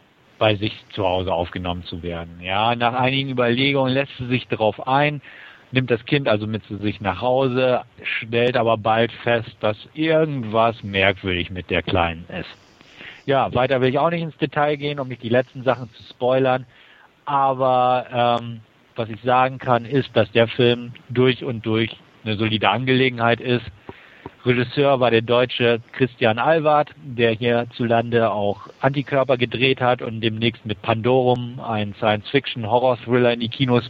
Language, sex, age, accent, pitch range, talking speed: German, male, 50-69, German, 110-130 Hz, 160 wpm